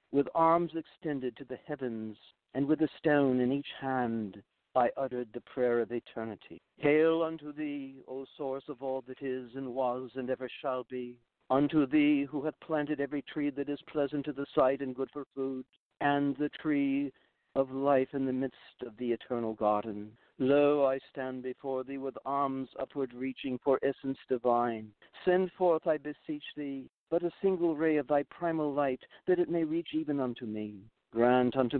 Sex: male